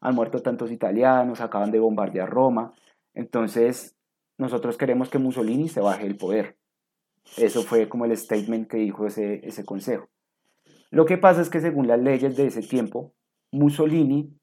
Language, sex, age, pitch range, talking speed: Spanish, male, 30-49, 110-145 Hz, 160 wpm